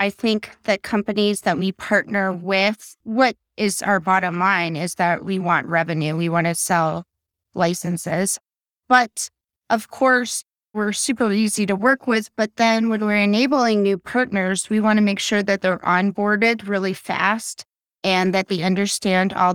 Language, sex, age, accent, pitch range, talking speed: English, female, 30-49, American, 185-220 Hz, 165 wpm